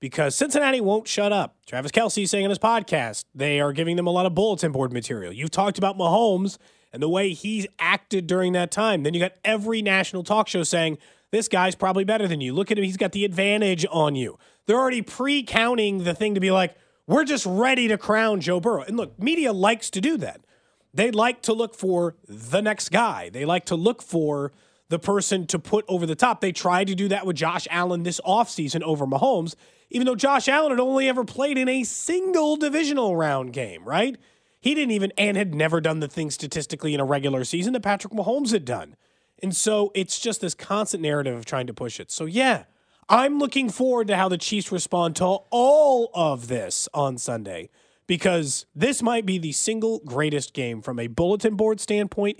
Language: English